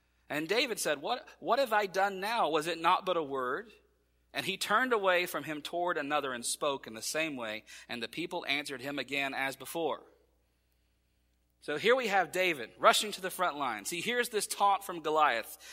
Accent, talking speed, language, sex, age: American, 200 wpm, English, male, 40-59